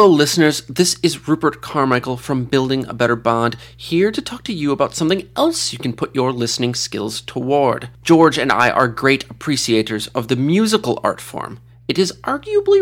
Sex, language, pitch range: male, English, 120-180 Hz